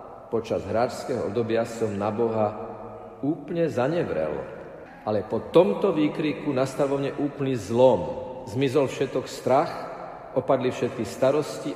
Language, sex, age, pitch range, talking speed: Slovak, male, 50-69, 105-145 Hz, 105 wpm